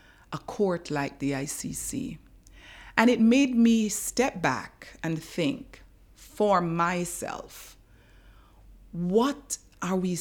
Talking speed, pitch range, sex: 105 wpm, 145-180 Hz, female